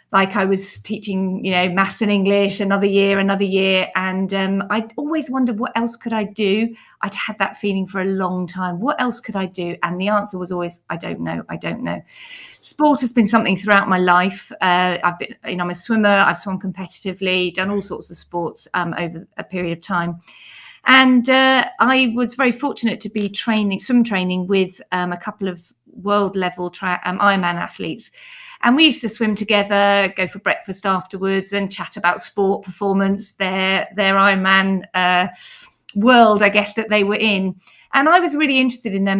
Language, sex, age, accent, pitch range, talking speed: English, female, 40-59, British, 185-225 Hz, 195 wpm